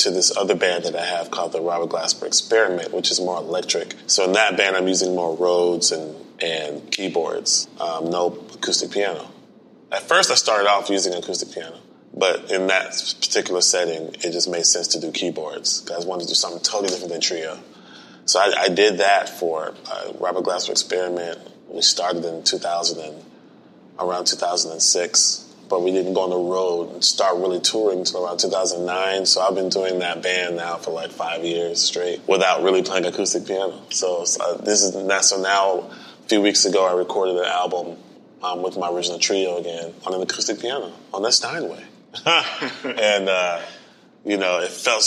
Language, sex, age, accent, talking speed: English, male, 20-39, American, 185 wpm